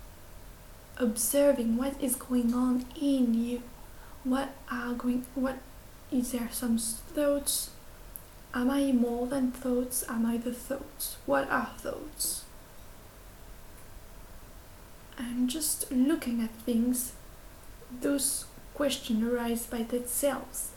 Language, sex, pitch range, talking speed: French, female, 240-265 Hz, 105 wpm